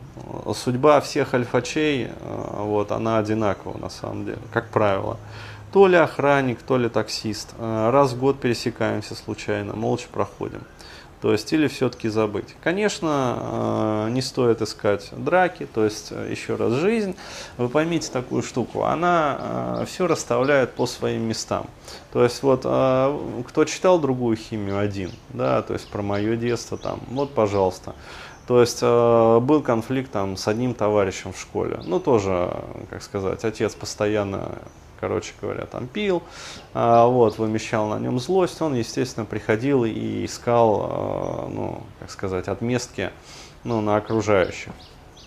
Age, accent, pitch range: 20-39, native, 105-130 Hz